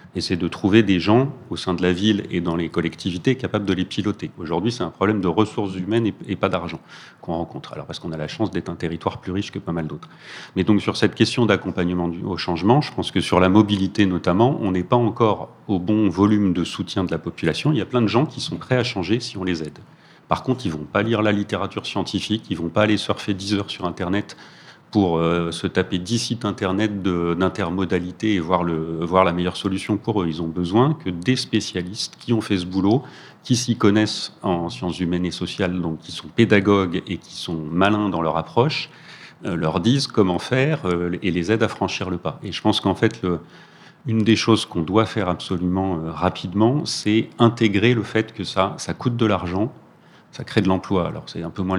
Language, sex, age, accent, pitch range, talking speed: French, male, 40-59, French, 90-110 Hz, 235 wpm